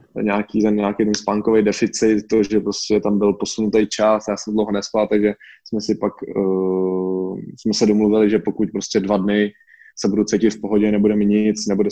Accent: native